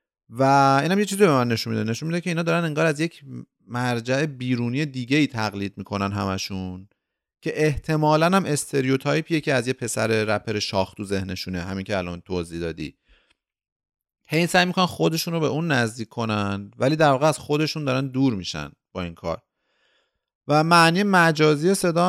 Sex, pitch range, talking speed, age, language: male, 105-155 Hz, 175 wpm, 30-49, Persian